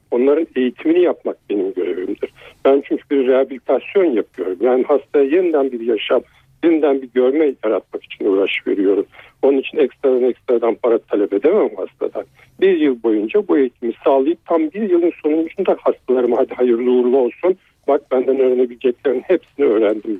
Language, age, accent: Turkish, 60-79, native